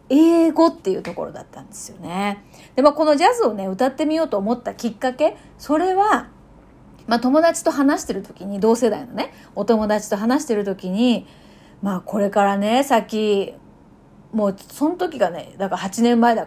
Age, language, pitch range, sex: 30-49, Japanese, 210-295 Hz, female